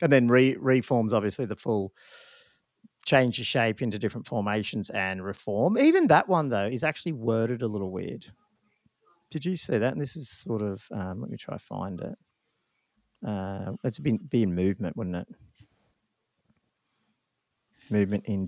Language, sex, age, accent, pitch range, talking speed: English, male, 40-59, Australian, 105-135 Hz, 165 wpm